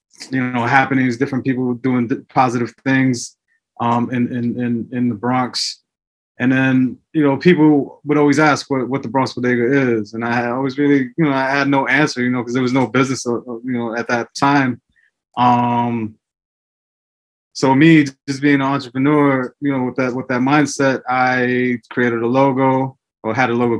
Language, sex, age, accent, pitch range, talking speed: English, male, 20-39, American, 120-140 Hz, 185 wpm